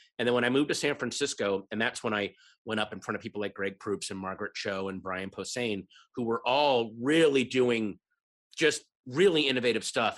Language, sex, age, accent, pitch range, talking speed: English, male, 30-49, American, 115-170 Hz, 210 wpm